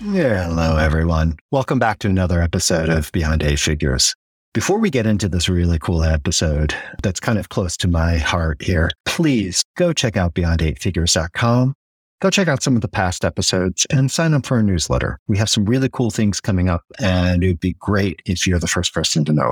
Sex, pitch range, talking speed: male, 85-115 Hz, 205 wpm